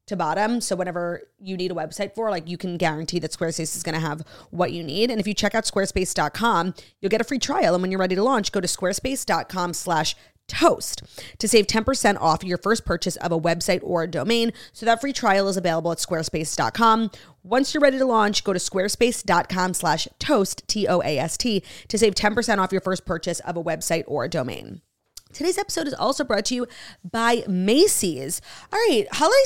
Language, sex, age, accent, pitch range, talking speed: English, female, 30-49, American, 180-240 Hz, 200 wpm